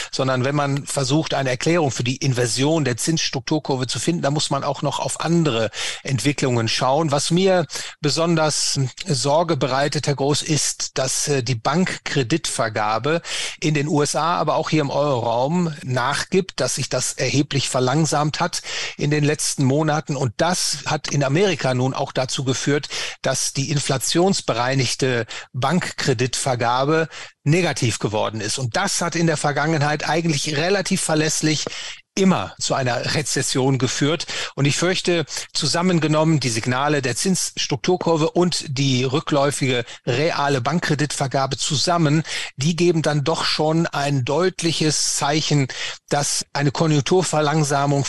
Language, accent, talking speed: German, German, 135 wpm